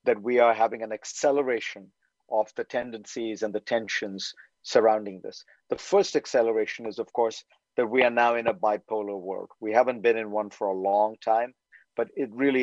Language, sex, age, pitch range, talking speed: English, male, 50-69, 110-135 Hz, 190 wpm